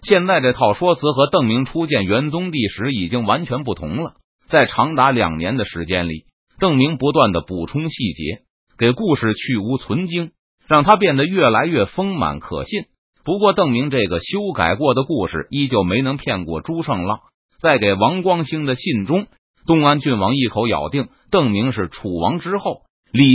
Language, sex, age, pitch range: Chinese, male, 30-49, 115-170 Hz